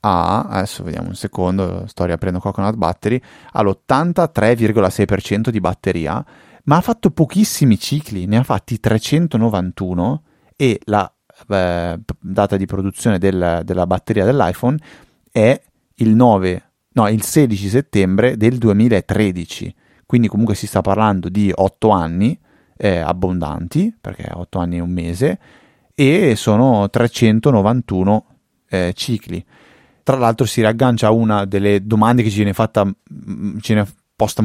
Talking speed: 120 wpm